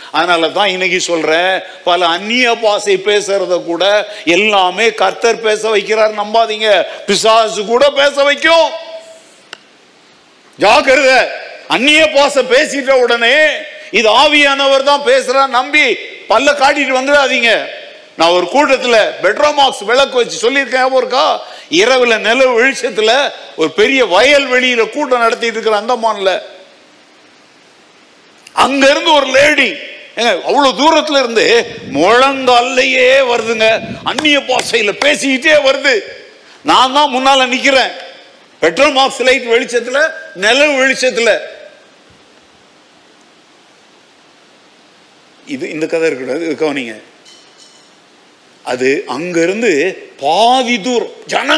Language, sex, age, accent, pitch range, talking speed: English, male, 50-69, Indian, 225-300 Hz, 95 wpm